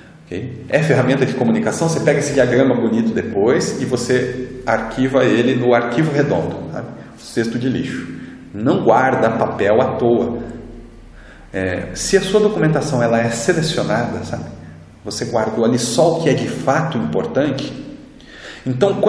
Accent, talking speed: Brazilian, 145 wpm